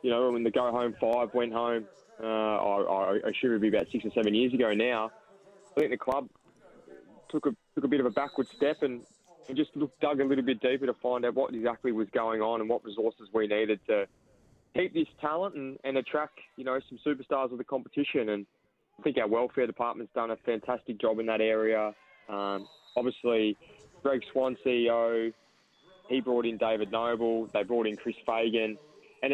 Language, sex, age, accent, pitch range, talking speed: English, male, 20-39, Australian, 110-135 Hz, 205 wpm